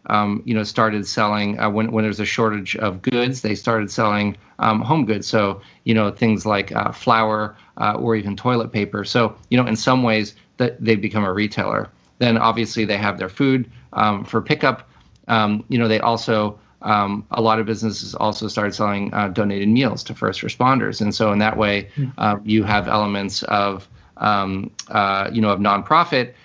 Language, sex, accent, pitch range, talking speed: English, male, American, 105-115 Hz, 195 wpm